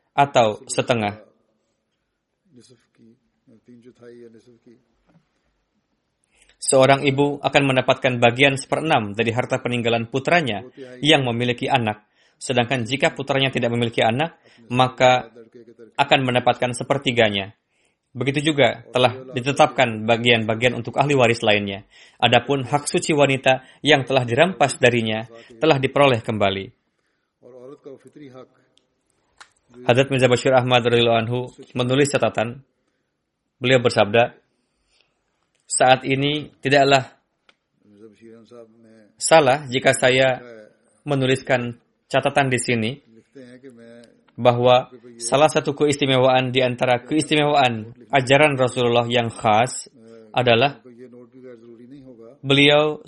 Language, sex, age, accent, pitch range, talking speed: Indonesian, male, 20-39, native, 115-140 Hz, 85 wpm